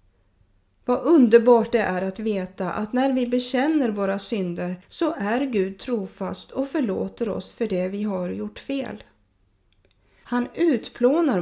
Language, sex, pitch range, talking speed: Swedish, female, 185-255 Hz, 140 wpm